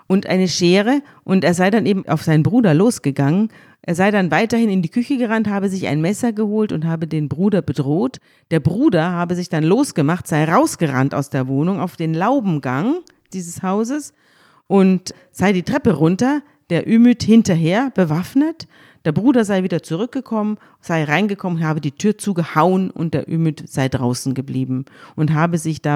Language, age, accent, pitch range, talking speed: German, 40-59, German, 150-200 Hz, 175 wpm